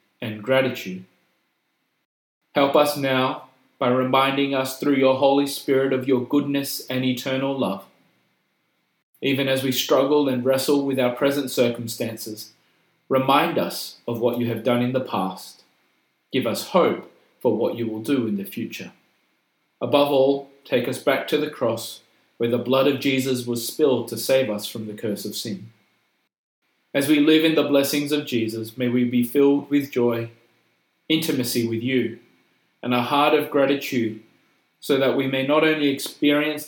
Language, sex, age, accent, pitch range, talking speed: English, male, 30-49, Australian, 120-140 Hz, 165 wpm